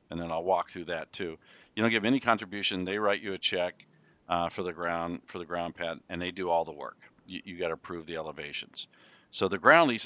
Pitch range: 85-100 Hz